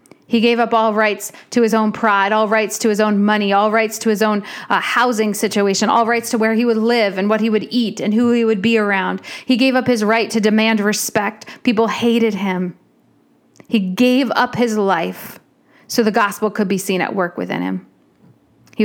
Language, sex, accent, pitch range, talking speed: English, female, American, 195-235 Hz, 215 wpm